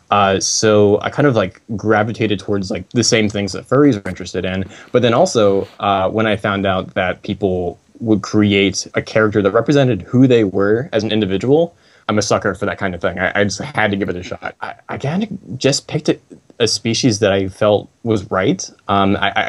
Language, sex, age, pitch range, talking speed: English, male, 20-39, 95-115 Hz, 220 wpm